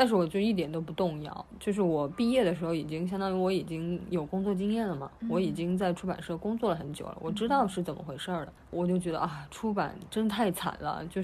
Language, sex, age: Chinese, female, 20-39